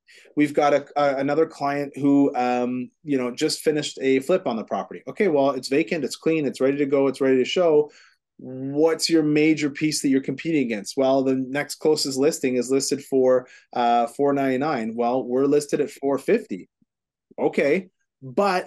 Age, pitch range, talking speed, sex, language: 30-49, 130-155 Hz, 180 wpm, male, English